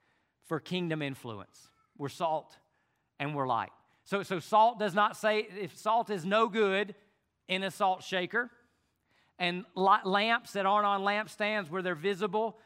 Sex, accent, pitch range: male, American, 175-210 Hz